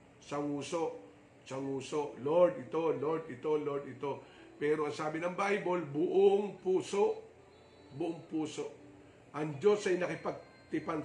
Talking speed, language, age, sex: 115 wpm, English, 50-69, male